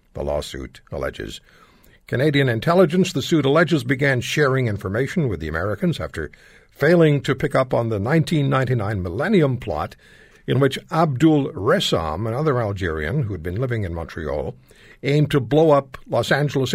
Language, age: English, 60-79